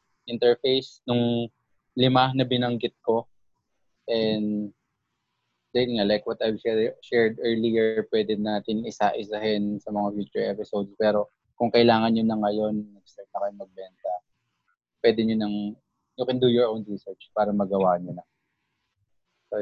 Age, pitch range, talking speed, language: 20-39, 100-115 Hz, 130 wpm, English